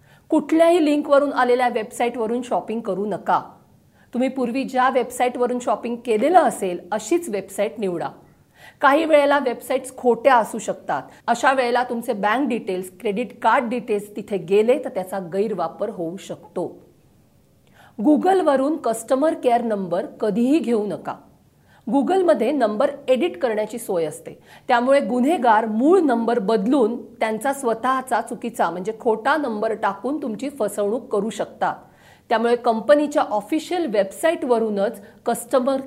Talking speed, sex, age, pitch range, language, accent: 120 wpm, female, 50-69, 215-275 Hz, Marathi, native